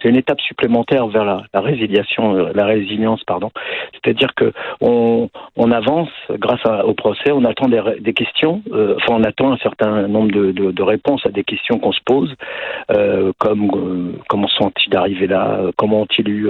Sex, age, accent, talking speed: male, 50-69, French, 195 wpm